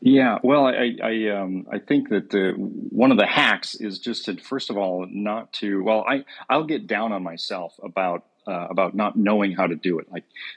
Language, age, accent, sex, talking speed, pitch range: English, 40-59, American, male, 215 wpm, 90-105 Hz